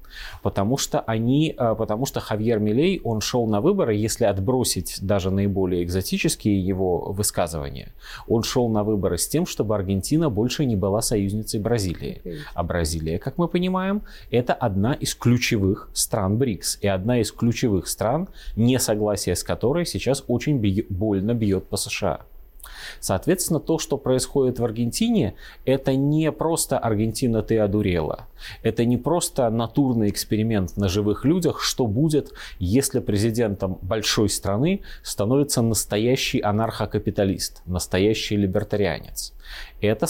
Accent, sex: native, male